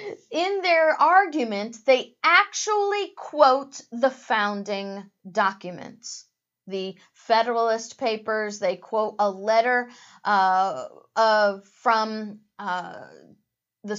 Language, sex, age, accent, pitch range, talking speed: English, female, 40-59, American, 225-305 Hz, 90 wpm